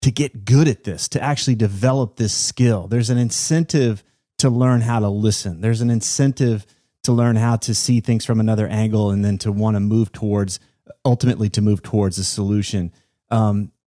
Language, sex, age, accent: English, male, 30-49, American